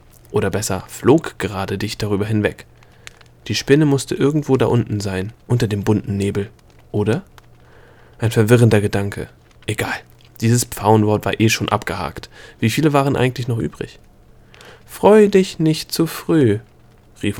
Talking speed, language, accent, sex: 140 wpm, German, German, male